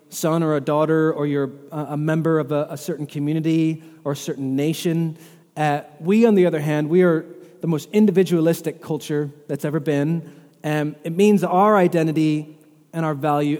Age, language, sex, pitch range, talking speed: 30-49, English, male, 150-175 Hz, 175 wpm